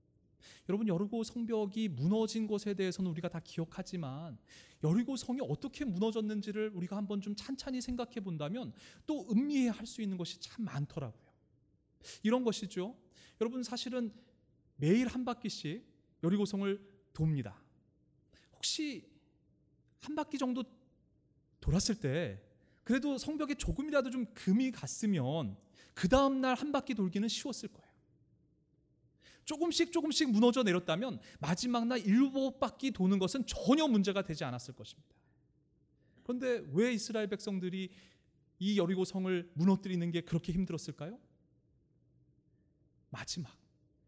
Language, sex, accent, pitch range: Korean, male, native, 180-250 Hz